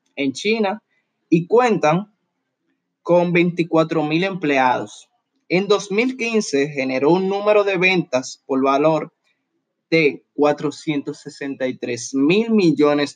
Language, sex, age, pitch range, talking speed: Spanish, male, 20-39, 135-180 Hz, 85 wpm